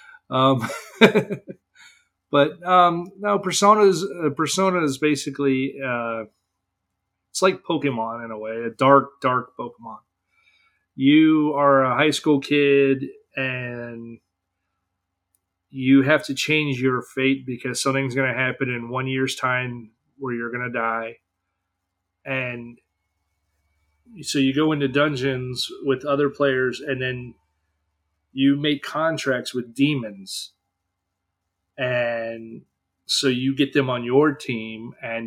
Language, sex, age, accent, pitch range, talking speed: English, male, 30-49, American, 90-140 Hz, 125 wpm